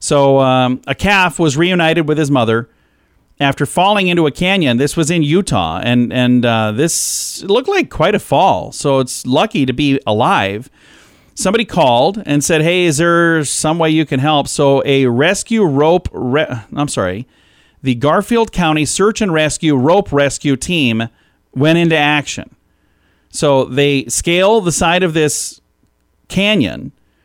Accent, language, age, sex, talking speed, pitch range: American, English, 40-59, male, 160 wpm, 125-165 Hz